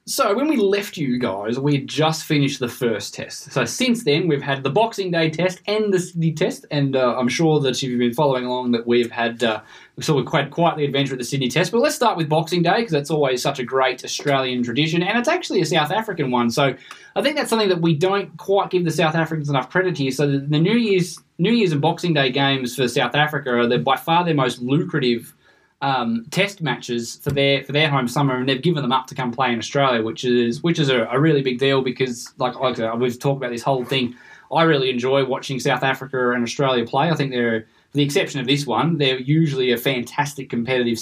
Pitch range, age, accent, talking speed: 125-165 Hz, 20-39, Australian, 245 wpm